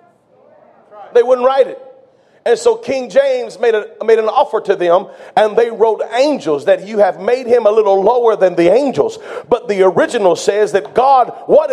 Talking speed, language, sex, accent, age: 190 wpm, English, male, American, 40-59